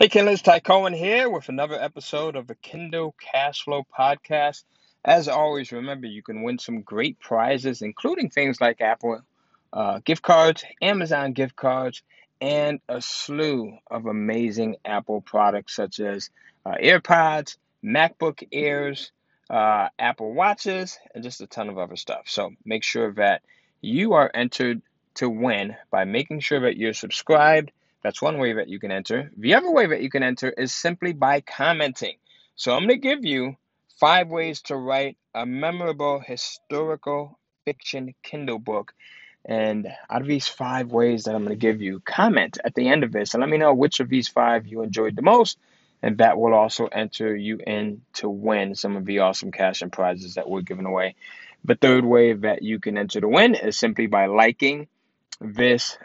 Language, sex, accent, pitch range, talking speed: English, male, American, 110-150 Hz, 180 wpm